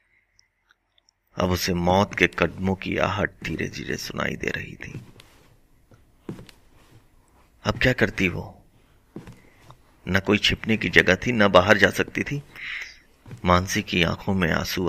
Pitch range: 90-110 Hz